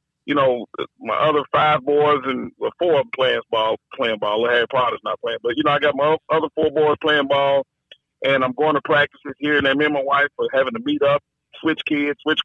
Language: English